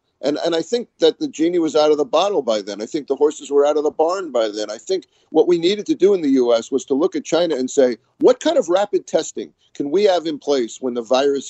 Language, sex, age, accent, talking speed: English, male, 50-69, American, 285 wpm